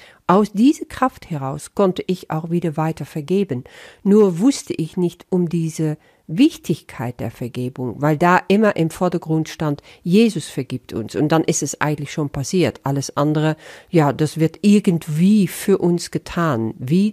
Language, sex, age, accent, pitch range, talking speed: German, female, 50-69, German, 155-210 Hz, 160 wpm